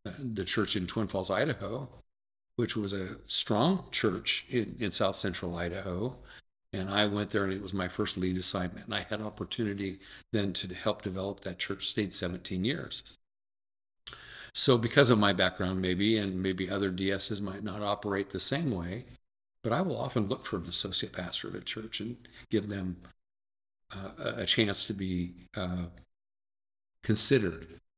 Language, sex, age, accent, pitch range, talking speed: English, male, 50-69, American, 90-110 Hz, 165 wpm